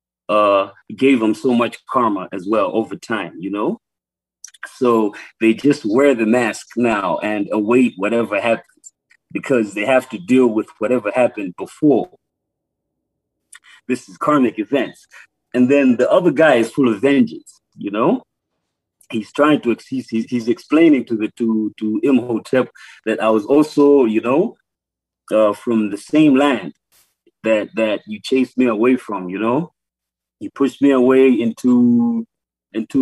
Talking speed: 155 wpm